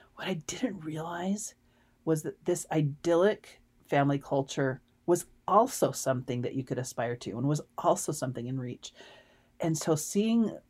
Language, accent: English, American